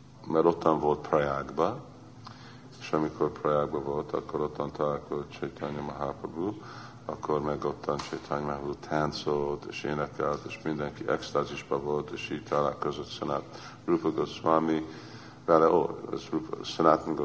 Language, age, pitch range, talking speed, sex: Hungarian, 50-69, 75-85 Hz, 115 wpm, male